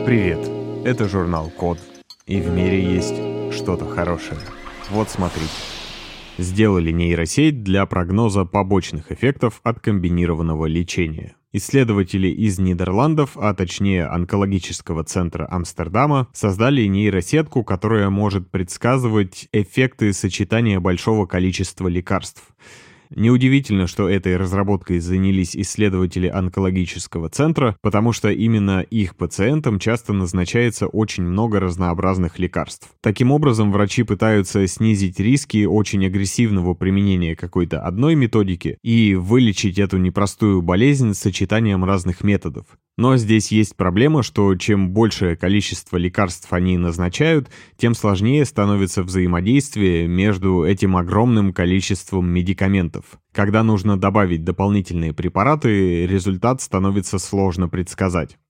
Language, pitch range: Russian, 90-110 Hz